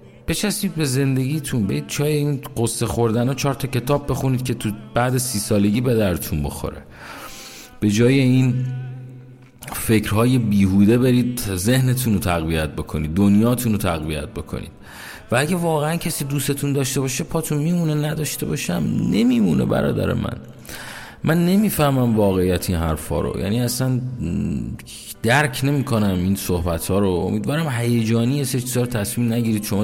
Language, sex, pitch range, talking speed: Persian, male, 100-130 Hz, 140 wpm